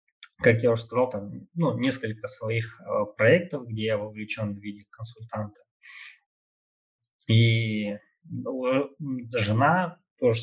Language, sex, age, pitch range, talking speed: Russian, male, 20-39, 105-125 Hz, 115 wpm